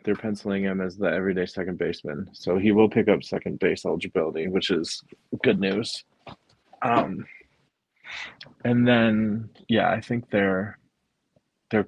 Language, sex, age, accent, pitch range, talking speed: English, male, 20-39, American, 95-105 Hz, 140 wpm